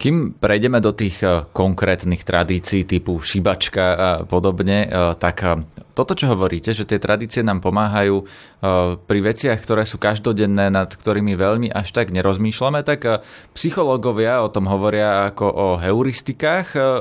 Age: 30-49